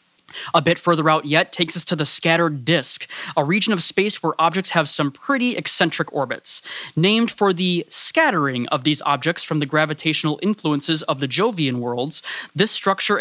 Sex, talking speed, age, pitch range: male, 175 wpm, 20-39, 150-190 Hz